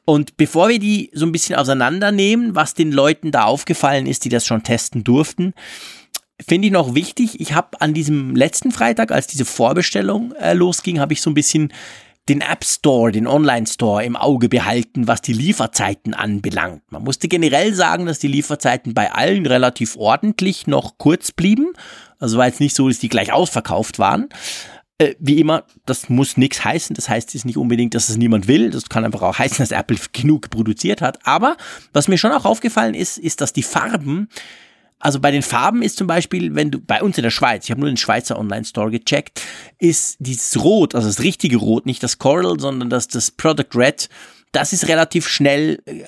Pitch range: 120-165 Hz